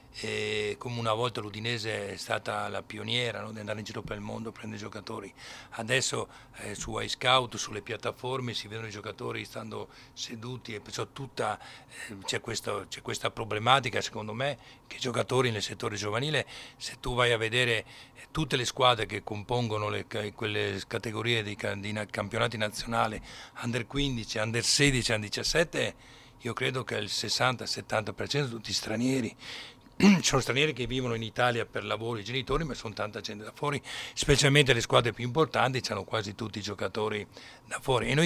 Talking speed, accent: 175 wpm, native